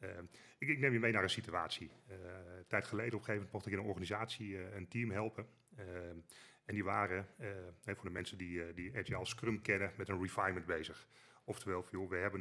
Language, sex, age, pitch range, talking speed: Dutch, male, 30-49, 95-120 Hz, 235 wpm